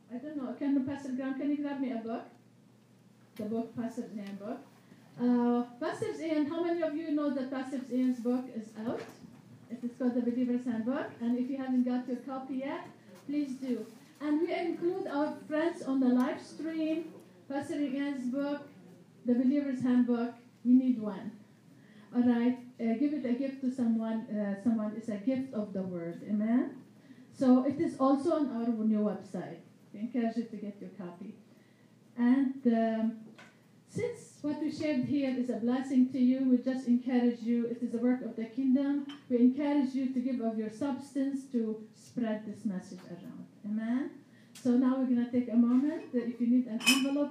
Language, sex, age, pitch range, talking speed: English, female, 40-59, 235-280 Hz, 185 wpm